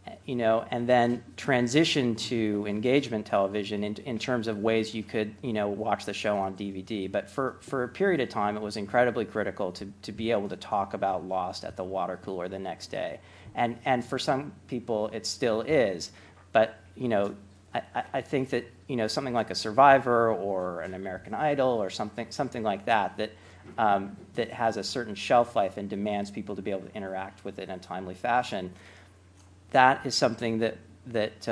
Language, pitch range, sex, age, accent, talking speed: English, 95-120 Hz, male, 40-59, American, 200 wpm